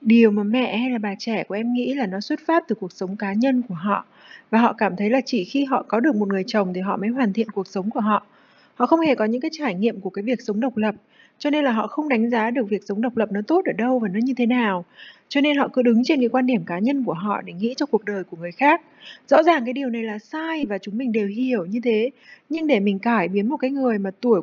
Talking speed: 300 wpm